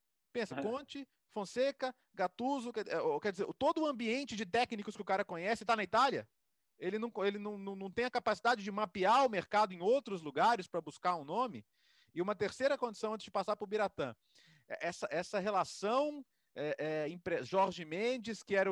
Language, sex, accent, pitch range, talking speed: Portuguese, male, Brazilian, 170-220 Hz, 185 wpm